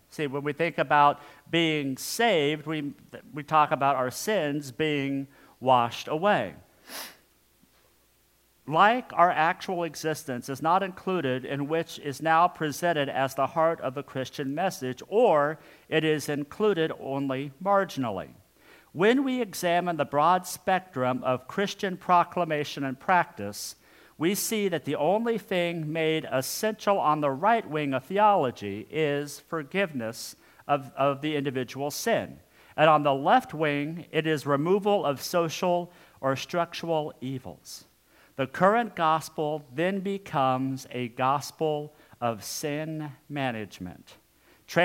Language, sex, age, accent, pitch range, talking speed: English, male, 50-69, American, 135-175 Hz, 130 wpm